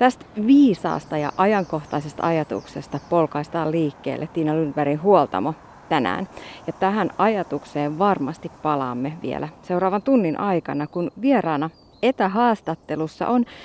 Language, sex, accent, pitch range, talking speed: Finnish, female, native, 150-235 Hz, 105 wpm